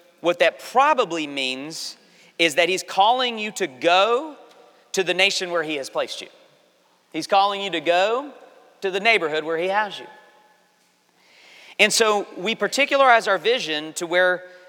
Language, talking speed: English, 160 wpm